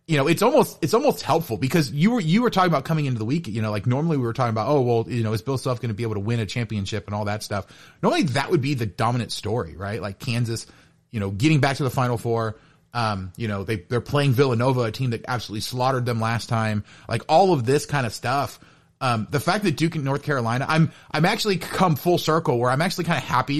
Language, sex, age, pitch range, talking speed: English, male, 30-49, 115-150 Hz, 265 wpm